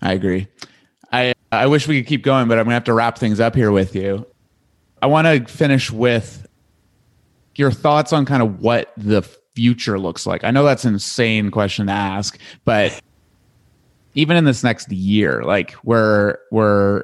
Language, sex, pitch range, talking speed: English, male, 100-125 Hz, 185 wpm